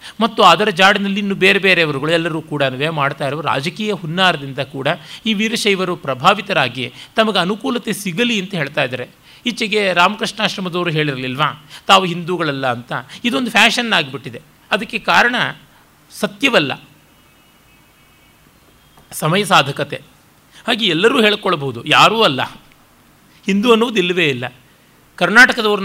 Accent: native